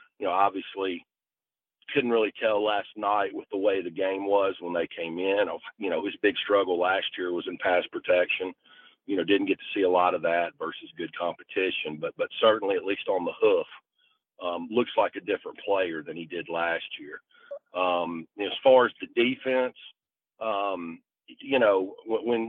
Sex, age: male, 40-59